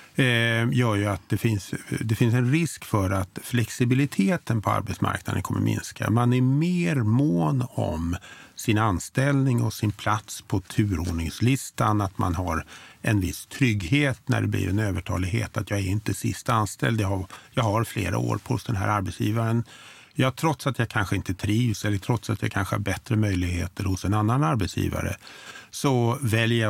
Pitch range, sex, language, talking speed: 100-130 Hz, male, Swedish, 175 wpm